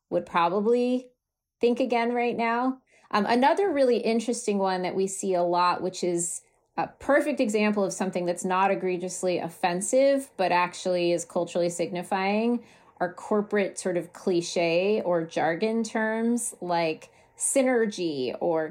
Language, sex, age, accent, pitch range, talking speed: English, female, 30-49, American, 175-220 Hz, 140 wpm